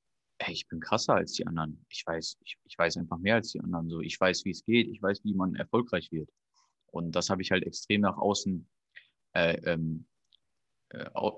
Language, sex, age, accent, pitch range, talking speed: German, male, 30-49, German, 95-110 Hz, 195 wpm